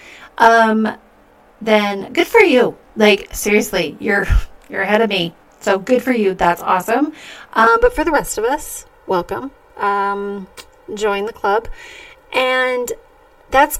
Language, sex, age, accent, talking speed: English, female, 30-49, American, 140 wpm